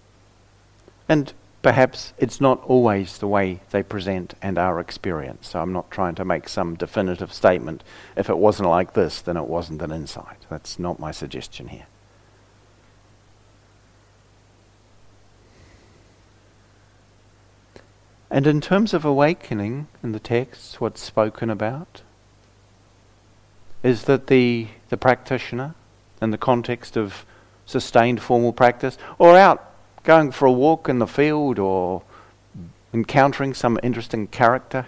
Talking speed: 125 wpm